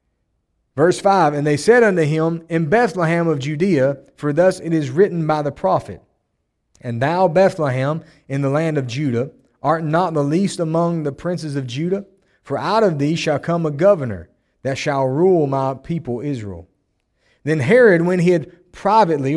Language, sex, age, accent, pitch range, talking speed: English, male, 30-49, American, 125-170 Hz, 175 wpm